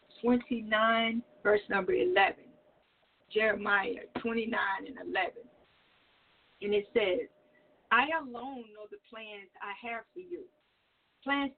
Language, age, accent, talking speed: English, 50-69, American, 110 wpm